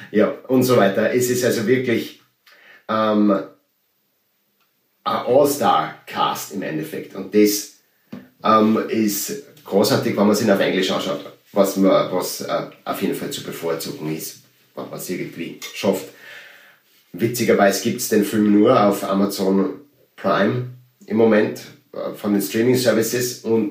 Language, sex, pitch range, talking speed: German, male, 100-125 Hz, 140 wpm